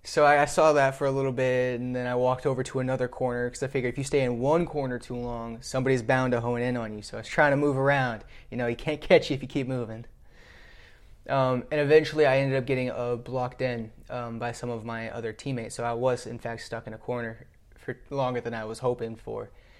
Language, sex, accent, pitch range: English, male, American, 120-140 Hz